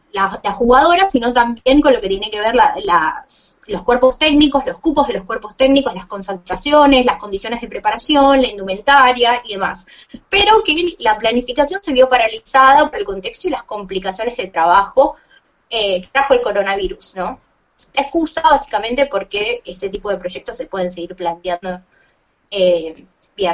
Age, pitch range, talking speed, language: 20-39, 200-290 Hz, 160 wpm, Spanish